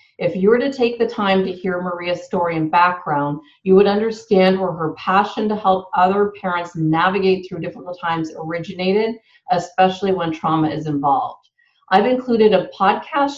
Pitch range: 170-210 Hz